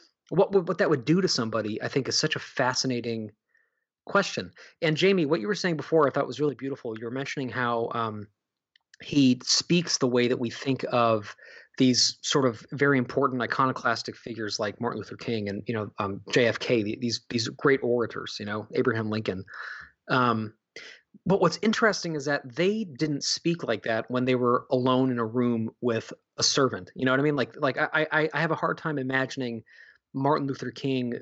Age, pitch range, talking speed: 20-39, 120-145 Hz, 200 wpm